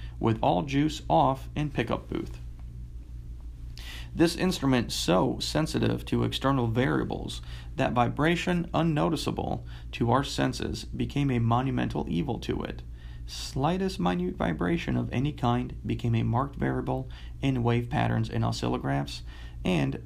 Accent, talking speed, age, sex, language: American, 125 wpm, 40-59, male, English